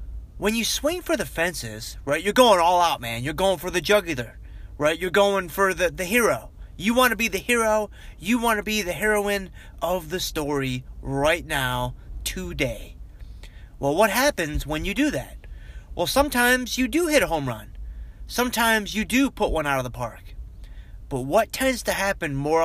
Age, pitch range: 30-49, 120-190 Hz